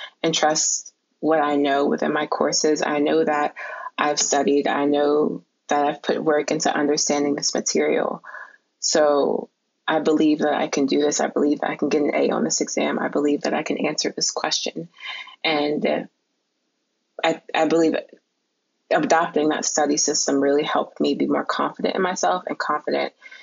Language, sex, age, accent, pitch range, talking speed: English, female, 20-39, American, 145-175 Hz, 175 wpm